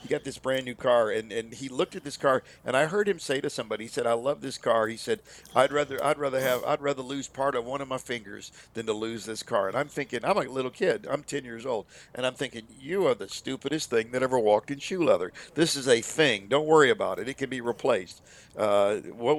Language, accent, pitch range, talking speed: English, American, 120-145 Hz, 265 wpm